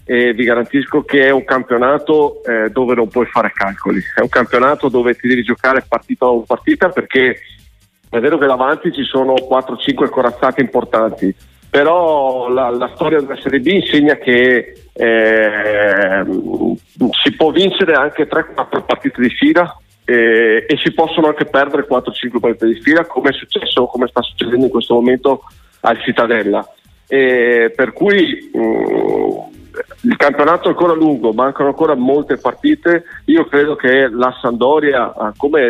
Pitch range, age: 120-160 Hz, 50-69